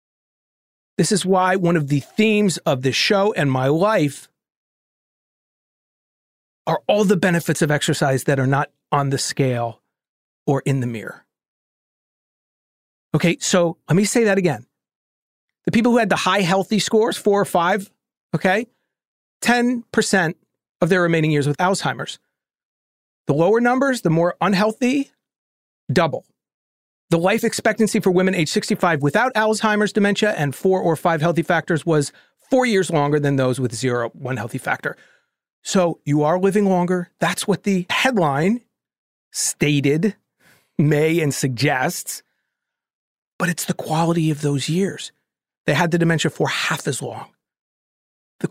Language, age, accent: English, 40-59, American